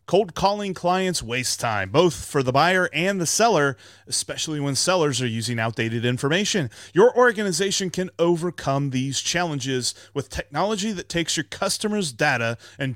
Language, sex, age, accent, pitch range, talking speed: English, male, 30-49, American, 115-175 Hz, 155 wpm